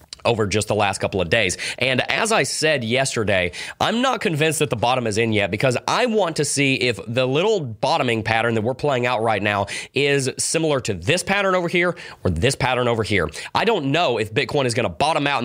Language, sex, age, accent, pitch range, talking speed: English, male, 30-49, American, 115-150 Hz, 230 wpm